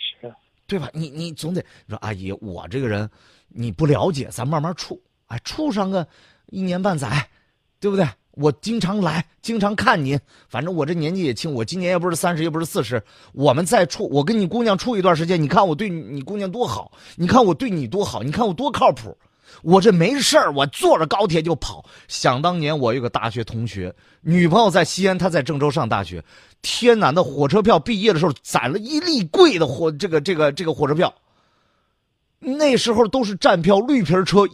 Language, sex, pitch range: Chinese, male, 135-205 Hz